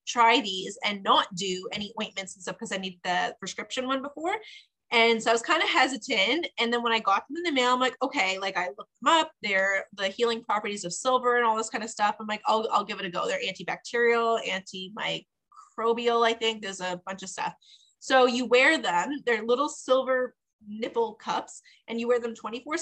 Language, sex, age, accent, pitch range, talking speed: English, female, 20-39, American, 195-250 Hz, 220 wpm